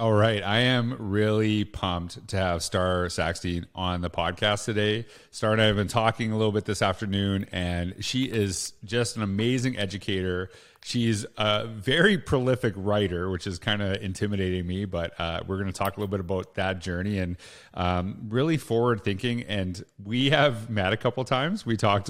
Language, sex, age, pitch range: English, male, 30-49, 95-115 Hz